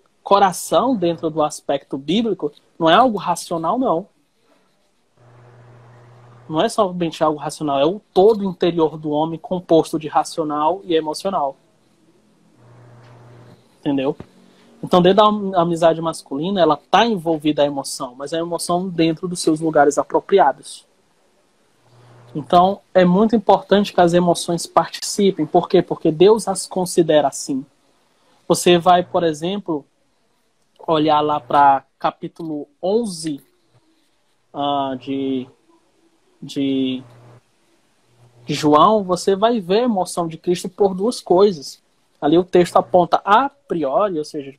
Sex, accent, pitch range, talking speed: male, Brazilian, 150-190 Hz, 120 wpm